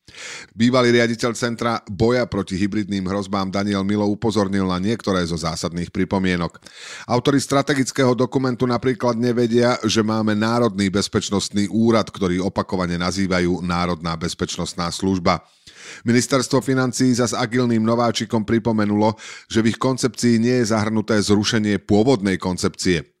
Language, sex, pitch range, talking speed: Slovak, male, 95-115 Hz, 120 wpm